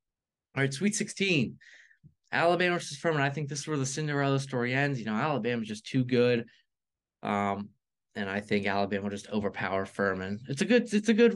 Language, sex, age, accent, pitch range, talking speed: English, male, 20-39, American, 105-135 Hz, 195 wpm